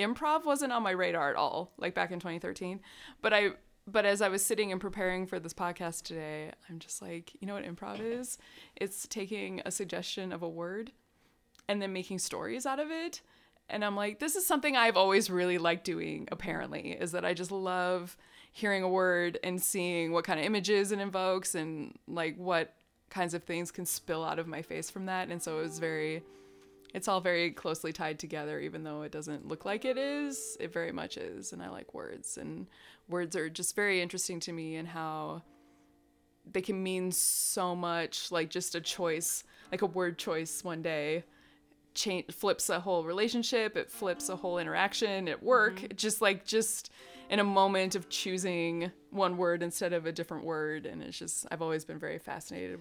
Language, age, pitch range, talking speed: English, 20-39, 170-200 Hz, 200 wpm